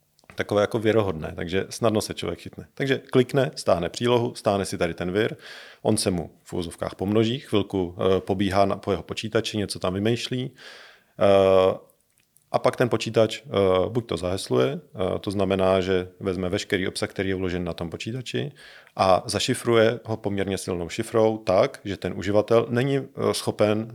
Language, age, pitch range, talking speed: Czech, 40-59, 95-110 Hz, 170 wpm